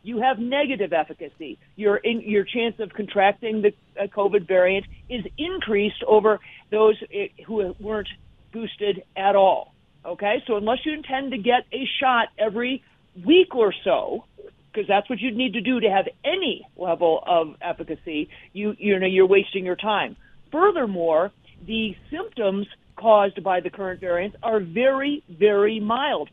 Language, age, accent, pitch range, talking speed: English, 50-69, American, 180-230 Hz, 155 wpm